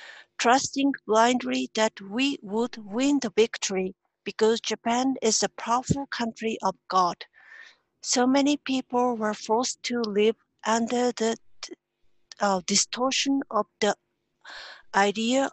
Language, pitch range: English, 215-260 Hz